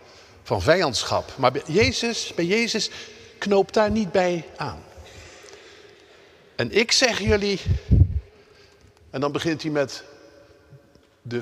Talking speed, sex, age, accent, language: 115 wpm, male, 50-69, Dutch, Dutch